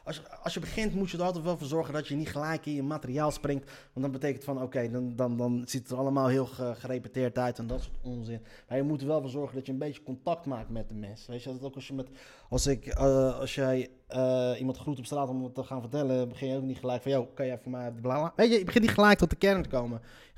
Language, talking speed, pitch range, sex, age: Dutch, 305 wpm, 125-175 Hz, male, 20-39